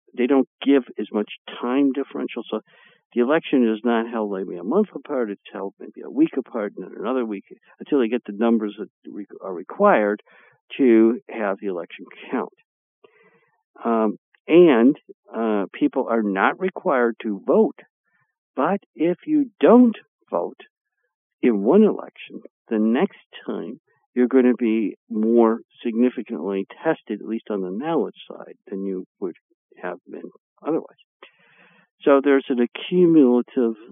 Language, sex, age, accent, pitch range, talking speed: English, male, 60-79, American, 110-165 Hz, 145 wpm